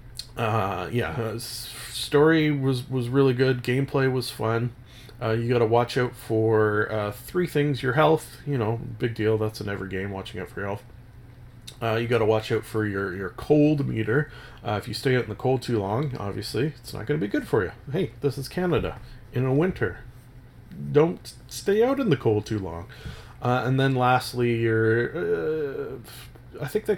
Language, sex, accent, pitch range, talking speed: English, male, American, 110-135 Hz, 200 wpm